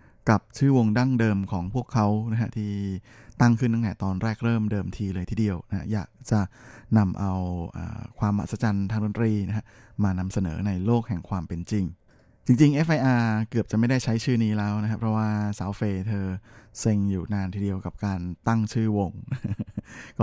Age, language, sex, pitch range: 20-39, Thai, male, 100-115 Hz